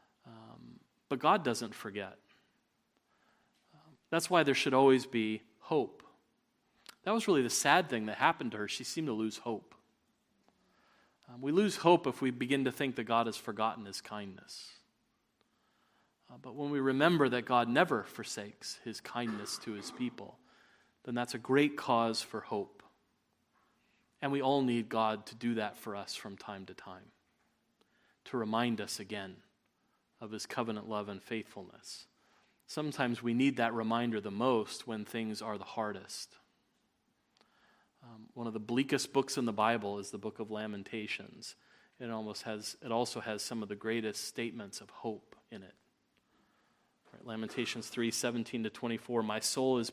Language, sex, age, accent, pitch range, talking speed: English, male, 40-59, American, 110-135 Hz, 160 wpm